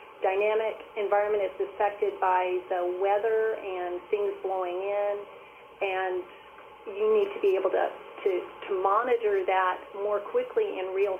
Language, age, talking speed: English, 40-59, 140 wpm